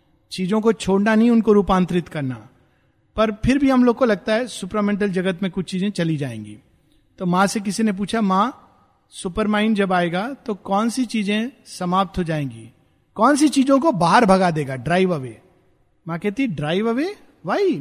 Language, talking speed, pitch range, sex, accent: Hindi, 180 wpm, 170-245 Hz, male, native